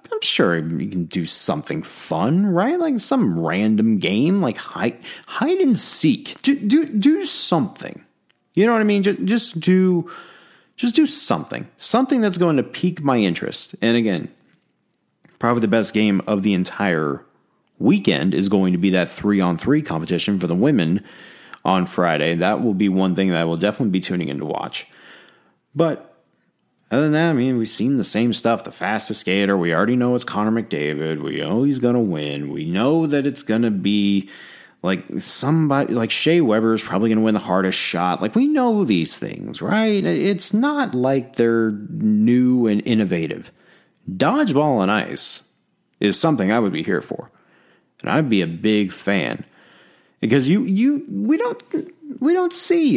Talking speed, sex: 180 wpm, male